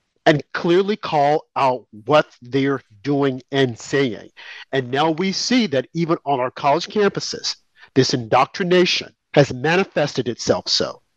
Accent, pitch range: American, 145-195 Hz